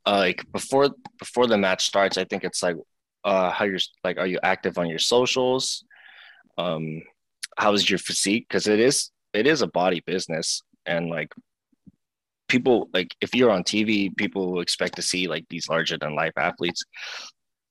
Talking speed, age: 175 wpm, 20-39